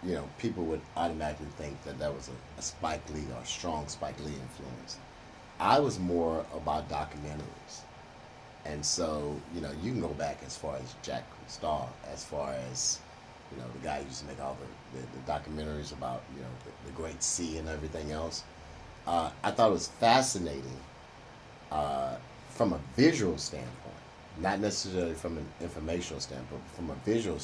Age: 30-49